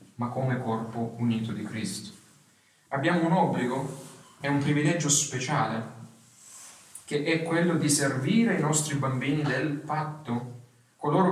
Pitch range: 125-175 Hz